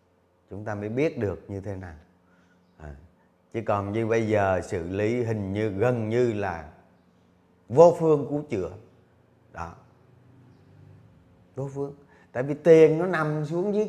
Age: 30-49